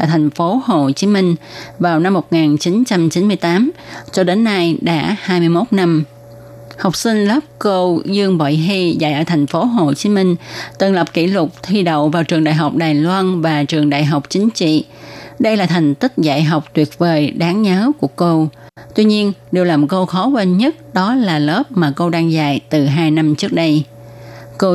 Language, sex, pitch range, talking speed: Vietnamese, female, 150-190 Hz, 195 wpm